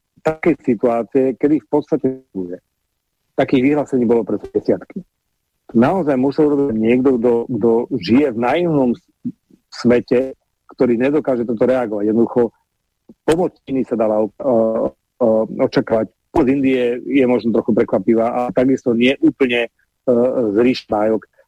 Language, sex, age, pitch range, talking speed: English, male, 40-59, 115-140 Hz, 125 wpm